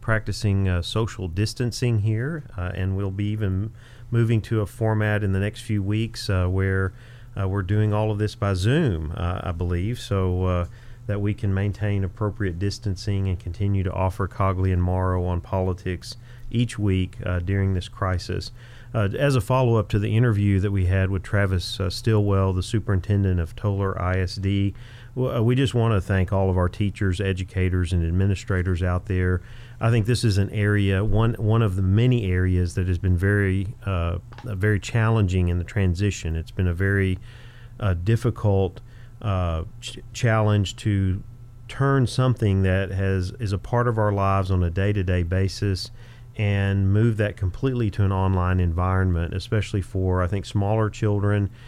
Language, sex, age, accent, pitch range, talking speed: English, male, 40-59, American, 95-115 Hz, 175 wpm